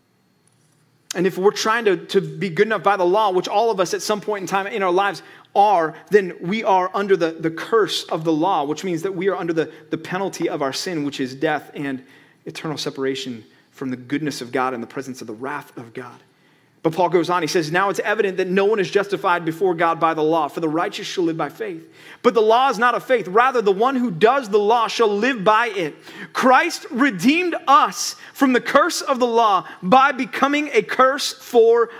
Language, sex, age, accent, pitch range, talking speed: English, male, 30-49, American, 170-255 Hz, 235 wpm